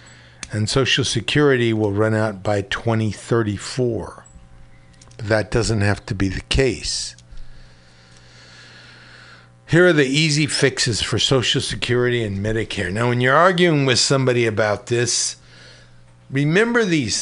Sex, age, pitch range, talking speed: male, 60-79, 95-145 Hz, 120 wpm